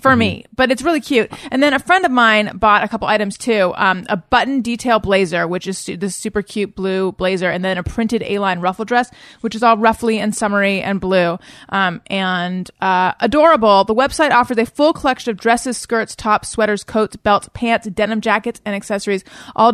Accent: American